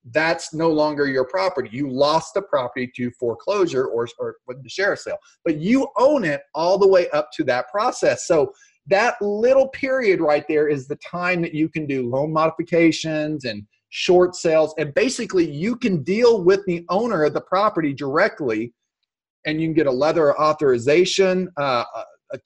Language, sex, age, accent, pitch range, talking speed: English, male, 30-49, American, 145-190 Hz, 175 wpm